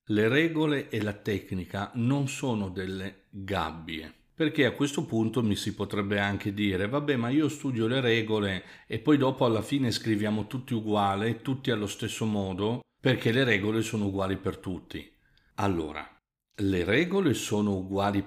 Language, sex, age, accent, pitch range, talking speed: Italian, male, 50-69, native, 100-120 Hz, 160 wpm